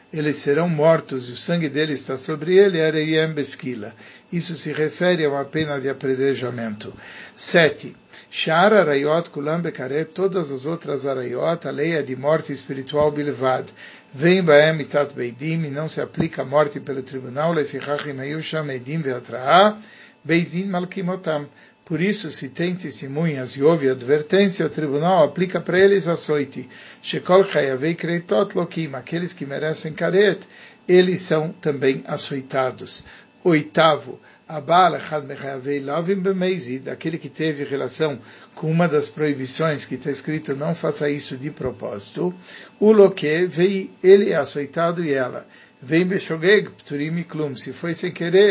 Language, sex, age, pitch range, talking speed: Spanish, male, 60-79, 140-170 Hz, 135 wpm